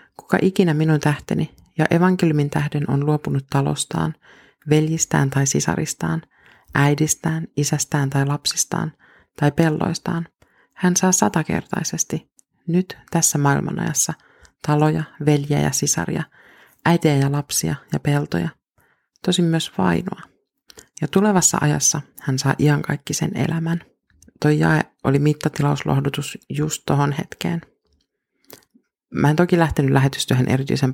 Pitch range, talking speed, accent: 140-165 Hz, 110 wpm, native